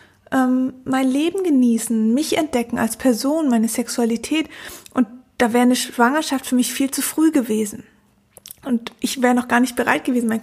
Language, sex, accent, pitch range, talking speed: German, female, German, 225-260 Hz, 165 wpm